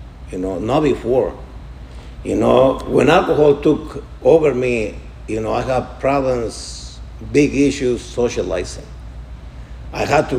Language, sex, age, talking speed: English, male, 50-69, 125 wpm